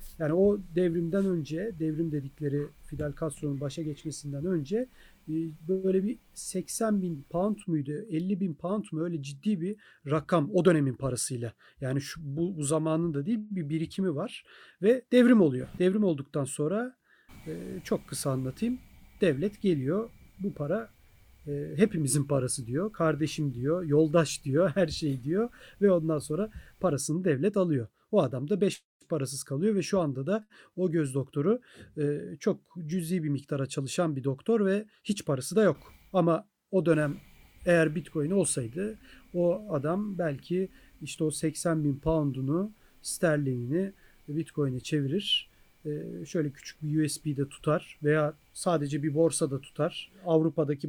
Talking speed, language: 140 wpm, Turkish